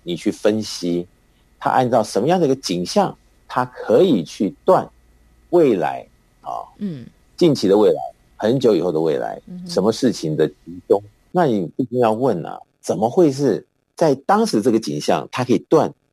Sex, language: male, Chinese